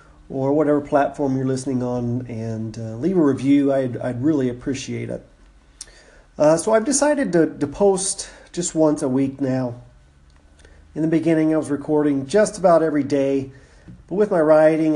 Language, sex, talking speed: English, male, 170 wpm